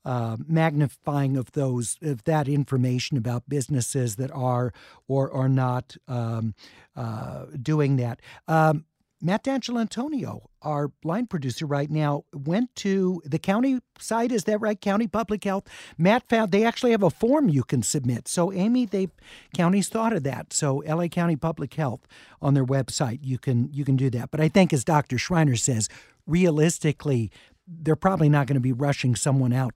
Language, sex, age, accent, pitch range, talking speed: English, male, 50-69, American, 130-180 Hz, 175 wpm